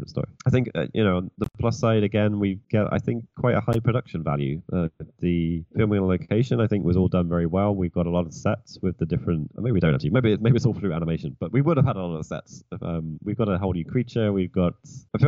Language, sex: English, male